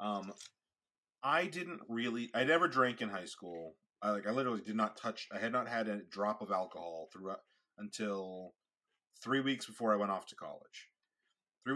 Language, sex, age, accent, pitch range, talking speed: English, male, 30-49, American, 95-120 Hz, 185 wpm